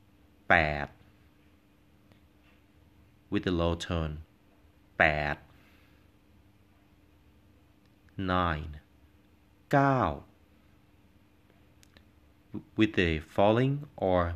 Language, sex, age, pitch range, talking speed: English, male, 30-49, 90-100 Hz, 50 wpm